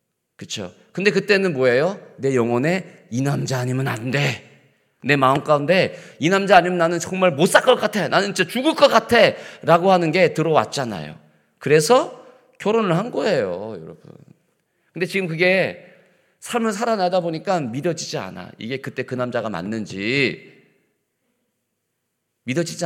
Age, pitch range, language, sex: 40-59, 120-180 Hz, Korean, male